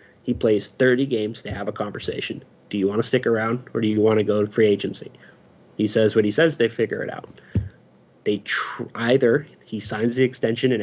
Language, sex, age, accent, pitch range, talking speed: English, male, 30-49, American, 115-135 Hz, 220 wpm